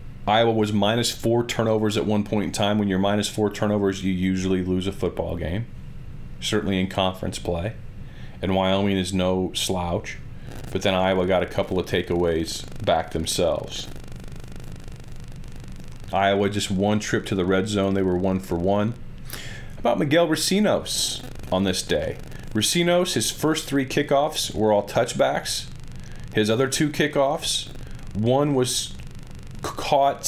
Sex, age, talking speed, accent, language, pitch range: male, 40-59, 150 wpm, American, English, 95-130 Hz